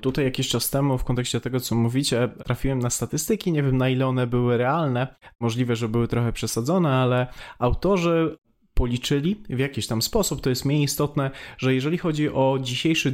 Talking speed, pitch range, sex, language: 185 wpm, 125-150 Hz, male, Polish